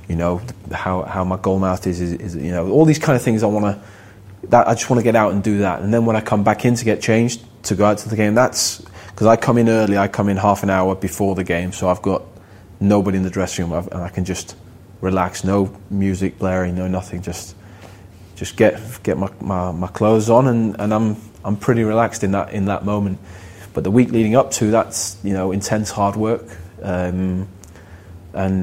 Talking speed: 240 wpm